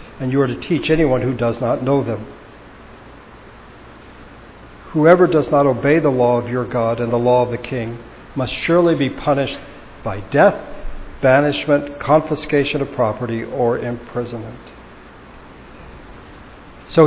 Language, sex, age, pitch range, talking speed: English, male, 60-79, 125-165 Hz, 135 wpm